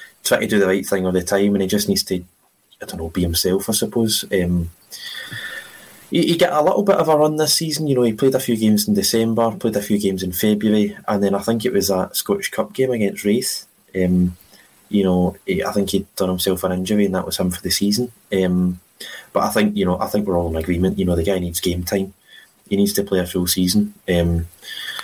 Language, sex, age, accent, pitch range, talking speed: English, male, 20-39, British, 90-105 Hz, 245 wpm